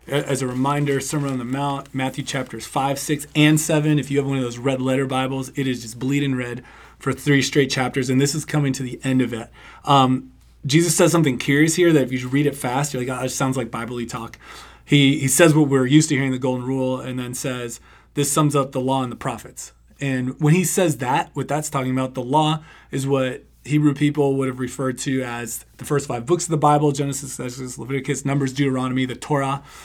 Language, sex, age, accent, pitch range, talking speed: English, male, 30-49, American, 130-150 Hz, 230 wpm